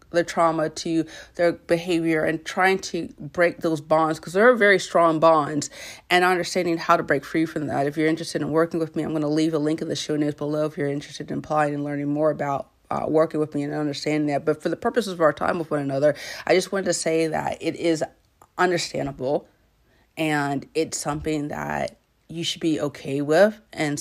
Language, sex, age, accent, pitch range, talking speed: English, female, 30-49, American, 150-175 Hz, 220 wpm